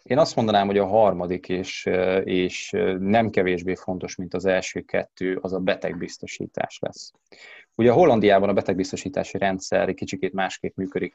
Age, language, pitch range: 20-39, Hungarian, 90-100 Hz